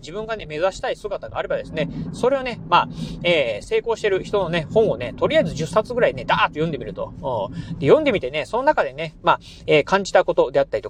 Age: 30-49